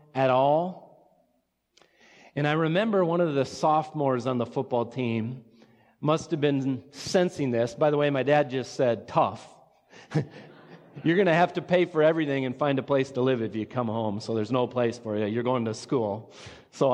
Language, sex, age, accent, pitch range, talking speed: English, male, 40-59, American, 130-160 Hz, 195 wpm